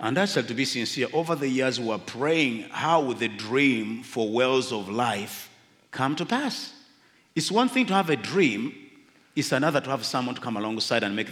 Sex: male